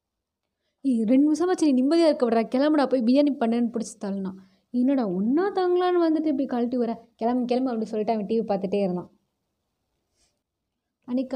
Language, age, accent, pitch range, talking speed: Tamil, 20-39, native, 200-245 Hz, 150 wpm